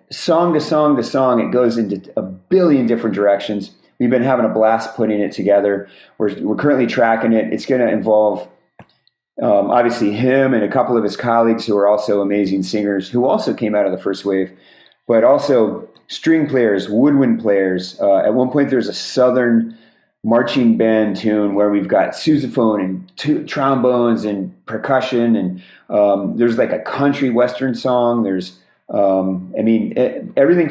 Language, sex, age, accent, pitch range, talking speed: English, male, 30-49, American, 100-130 Hz, 170 wpm